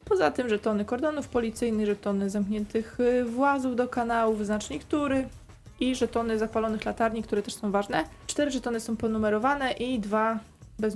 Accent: native